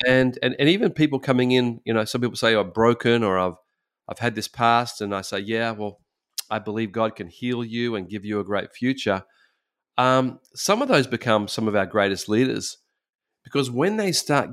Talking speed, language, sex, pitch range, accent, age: 215 wpm, English, male, 110-135 Hz, Australian, 40-59